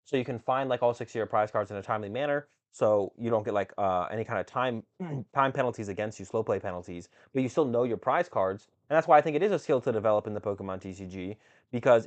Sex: male